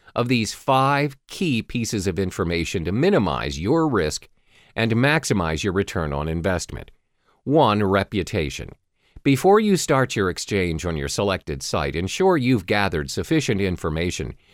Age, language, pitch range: 50-69, English, 90-130 Hz